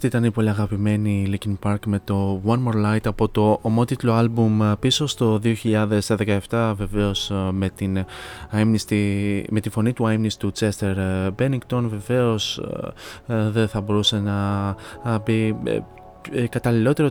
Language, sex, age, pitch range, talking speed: Greek, male, 20-39, 100-115 Hz, 125 wpm